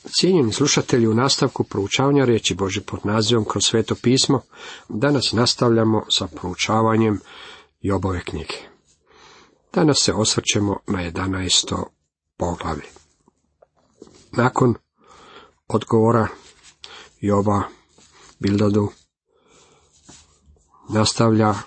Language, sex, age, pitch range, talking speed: Croatian, male, 50-69, 100-130 Hz, 80 wpm